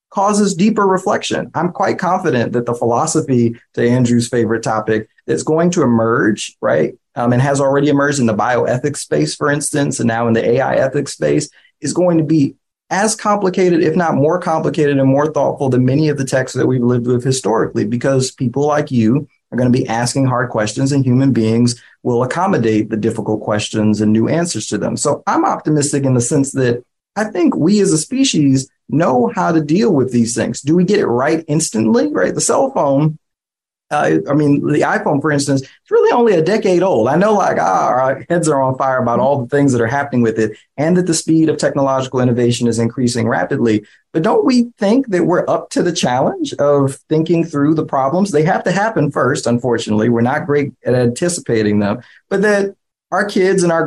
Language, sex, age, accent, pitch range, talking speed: English, male, 30-49, American, 120-160 Hz, 210 wpm